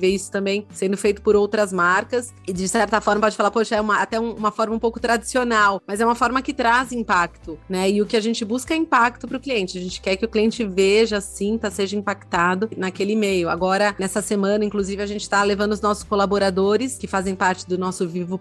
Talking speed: 230 wpm